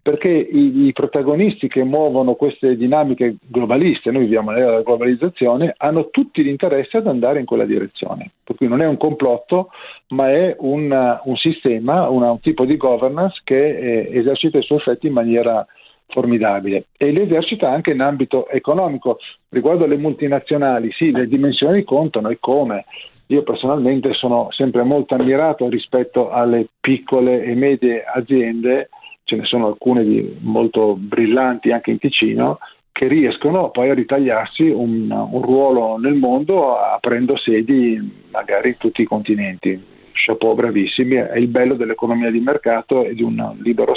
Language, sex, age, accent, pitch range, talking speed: Italian, male, 50-69, native, 120-150 Hz, 150 wpm